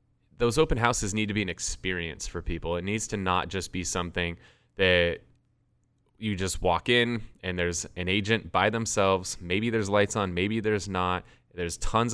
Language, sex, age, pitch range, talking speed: English, male, 20-39, 90-125 Hz, 185 wpm